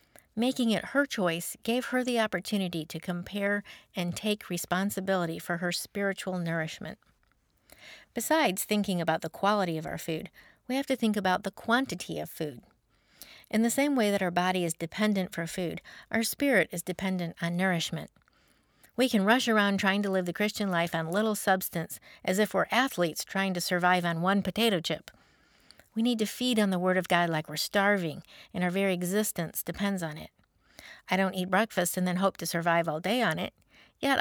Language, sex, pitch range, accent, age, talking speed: English, female, 175-215 Hz, American, 50-69, 190 wpm